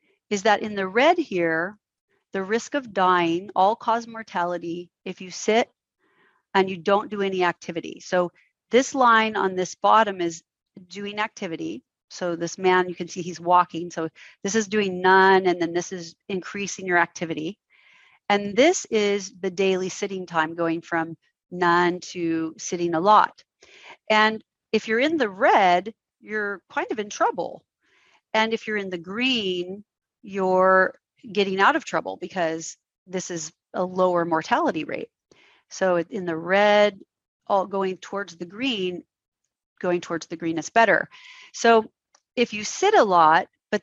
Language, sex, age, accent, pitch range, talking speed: English, female, 40-59, American, 175-220 Hz, 160 wpm